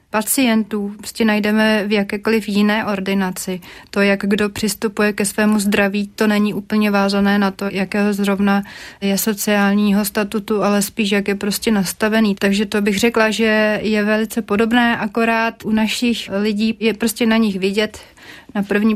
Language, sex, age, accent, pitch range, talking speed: Czech, female, 30-49, native, 200-220 Hz, 160 wpm